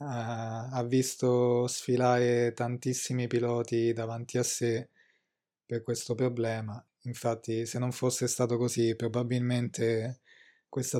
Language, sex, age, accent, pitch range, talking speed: Italian, male, 20-39, native, 115-125 Hz, 105 wpm